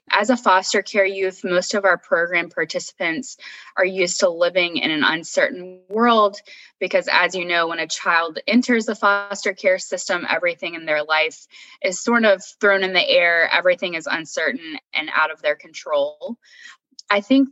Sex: female